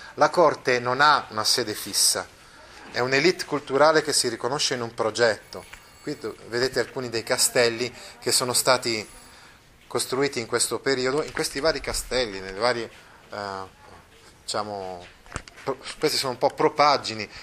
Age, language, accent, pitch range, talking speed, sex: 30-49, Italian, native, 110-145 Hz, 140 wpm, male